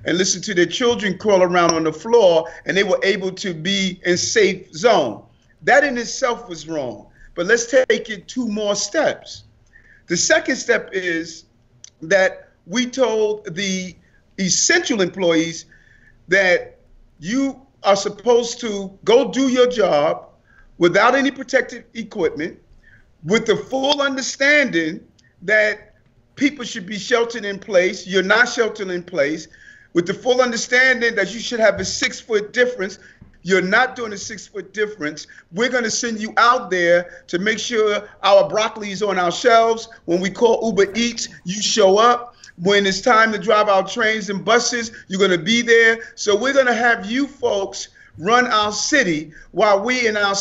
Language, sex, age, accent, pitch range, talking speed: English, male, 40-59, American, 185-240 Hz, 165 wpm